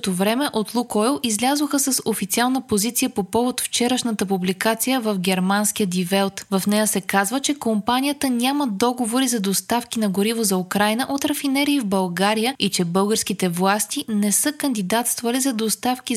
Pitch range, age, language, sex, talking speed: 200-255 Hz, 20-39, Bulgarian, female, 160 wpm